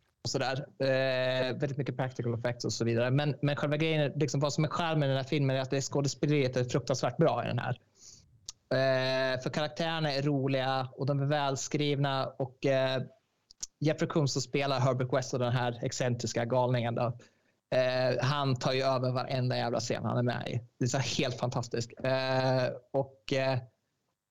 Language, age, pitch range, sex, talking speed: Swedish, 20-39, 120-140 Hz, male, 190 wpm